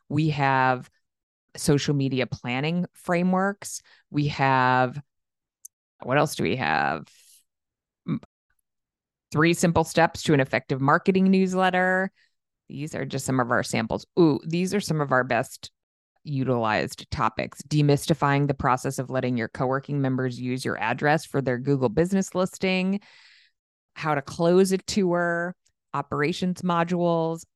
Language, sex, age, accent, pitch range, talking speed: English, female, 30-49, American, 135-175 Hz, 130 wpm